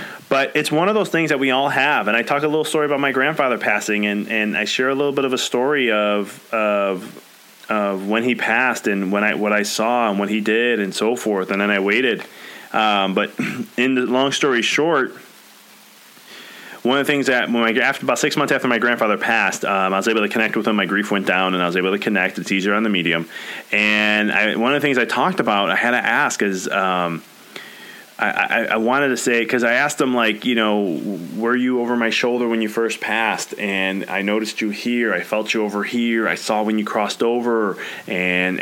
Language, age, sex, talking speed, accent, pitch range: English, 20-39, male, 235 wpm, American, 105-135 Hz